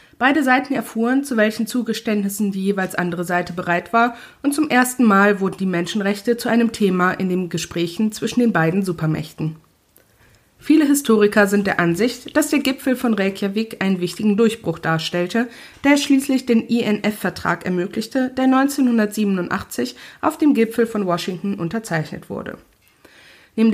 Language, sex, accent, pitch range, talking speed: German, female, German, 190-250 Hz, 145 wpm